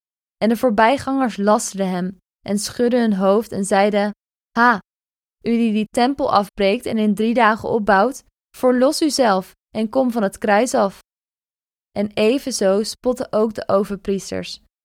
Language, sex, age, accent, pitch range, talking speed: Dutch, female, 20-39, Dutch, 200-235 Hz, 145 wpm